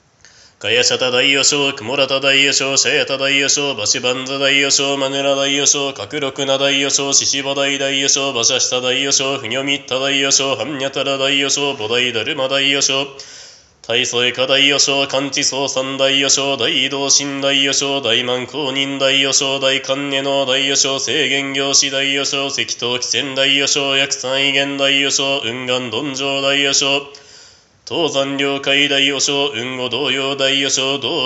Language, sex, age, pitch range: Japanese, male, 20-39, 135-140 Hz